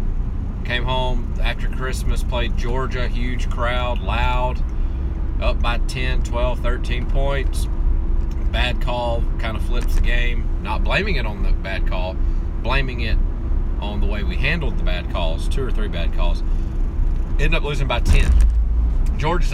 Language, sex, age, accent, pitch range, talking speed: English, male, 30-49, American, 65-85 Hz, 155 wpm